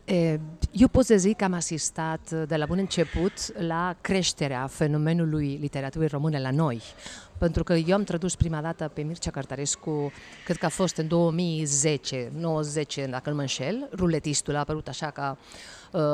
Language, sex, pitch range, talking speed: Romanian, female, 150-190 Hz, 180 wpm